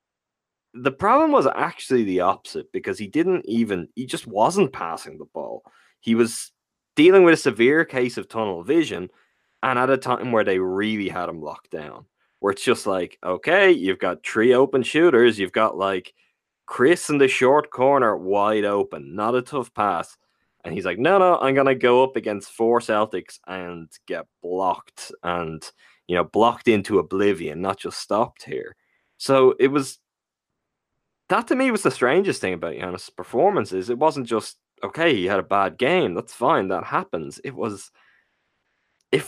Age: 20-39